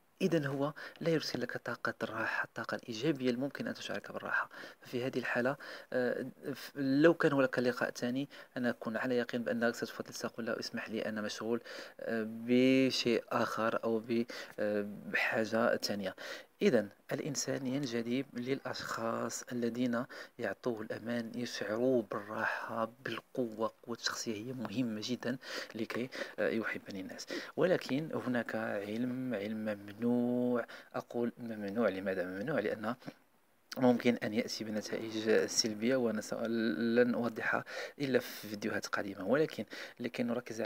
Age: 40-59